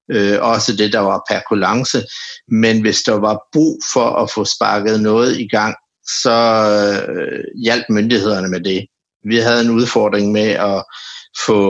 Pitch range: 105-120 Hz